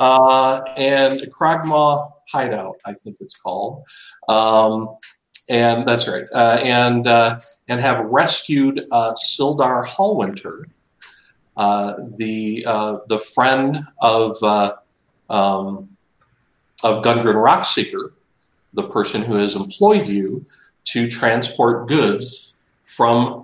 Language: English